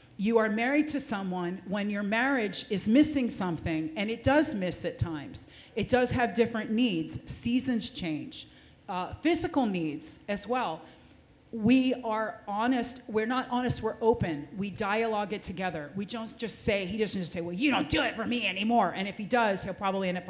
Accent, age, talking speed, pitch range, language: American, 40-59, 190 wpm, 185-245 Hz, English